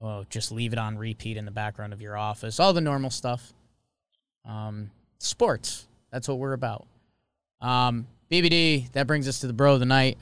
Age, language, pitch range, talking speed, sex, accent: 20-39, English, 115-145 Hz, 195 wpm, male, American